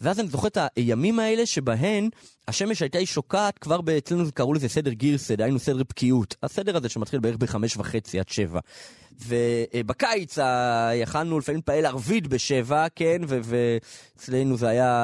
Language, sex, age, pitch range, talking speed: Hebrew, male, 20-39, 115-160 Hz, 160 wpm